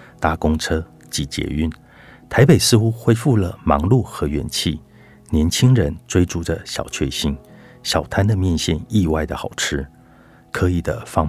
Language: Chinese